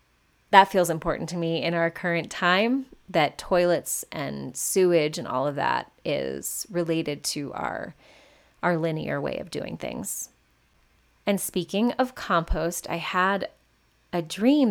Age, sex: 20-39, female